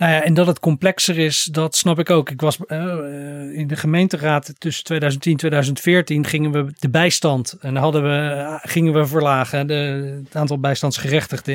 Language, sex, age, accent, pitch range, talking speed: Dutch, male, 40-59, Dutch, 140-170 Hz, 185 wpm